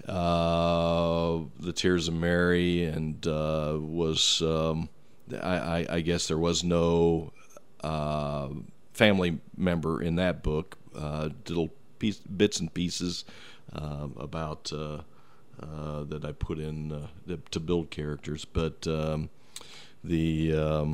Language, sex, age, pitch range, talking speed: English, male, 40-59, 80-85 Hz, 125 wpm